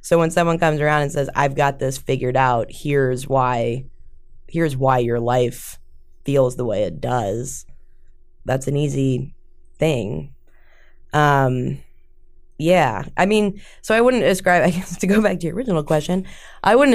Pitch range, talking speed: 125-155 Hz, 165 wpm